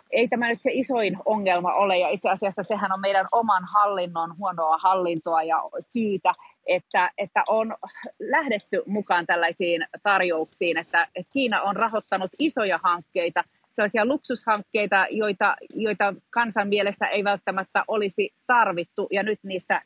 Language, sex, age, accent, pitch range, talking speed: Finnish, female, 30-49, native, 180-220 Hz, 135 wpm